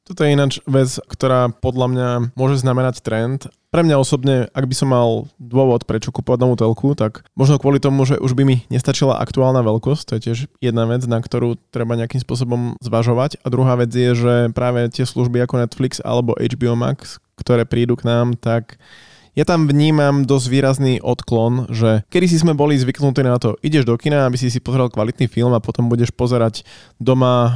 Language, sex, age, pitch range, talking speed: Slovak, male, 20-39, 120-140 Hz, 195 wpm